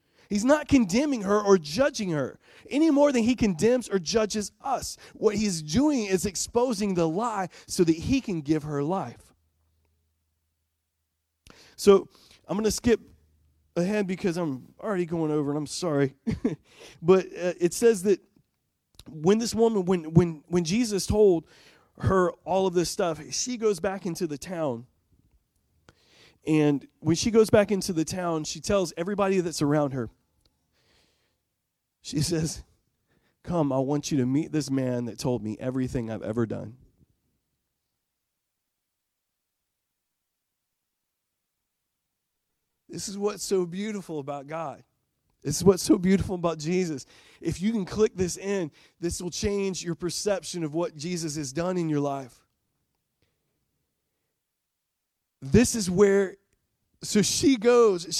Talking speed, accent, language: 140 wpm, American, English